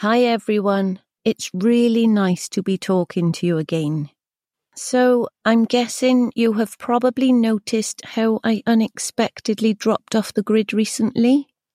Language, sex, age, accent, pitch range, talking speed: English, female, 40-59, British, 185-230 Hz, 135 wpm